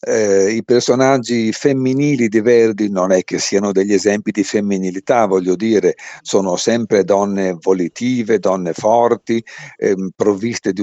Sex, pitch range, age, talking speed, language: male, 100-115 Hz, 50-69, 140 wpm, Italian